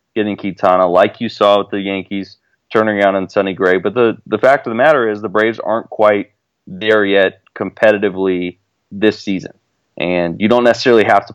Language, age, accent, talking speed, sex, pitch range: English, 20-39, American, 190 wpm, male, 100-125 Hz